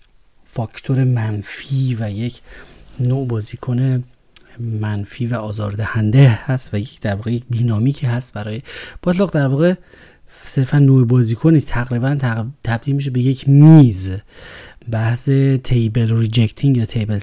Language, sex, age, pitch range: Persian, male, 40-59, 120-155 Hz